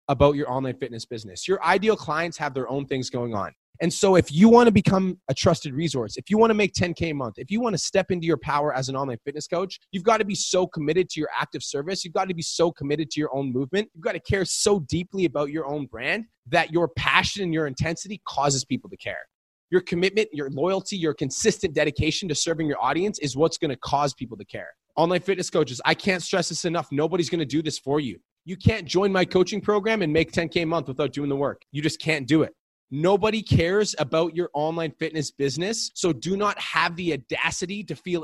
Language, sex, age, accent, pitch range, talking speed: English, male, 20-39, American, 145-185 Hz, 240 wpm